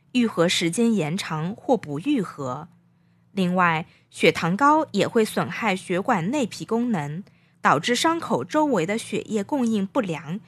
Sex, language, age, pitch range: female, Chinese, 20-39, 165-235 Hz